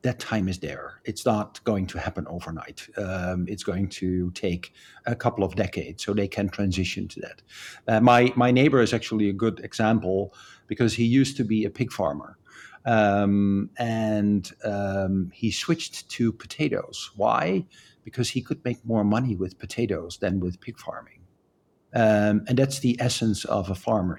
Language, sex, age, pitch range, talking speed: English, male, 50-69, 100-115 Hz, 175 wpm